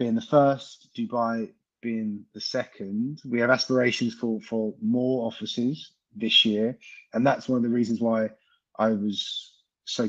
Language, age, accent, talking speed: English, 30-49, British, 155 wpm